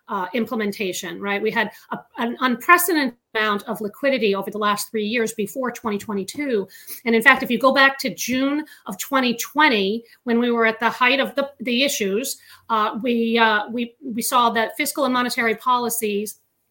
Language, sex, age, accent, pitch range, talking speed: English, female, 40-59, American, 215-260 Hz, 165 wpm